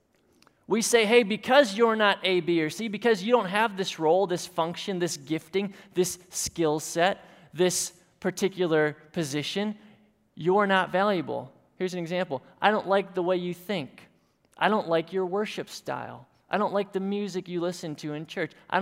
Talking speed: 180 wpm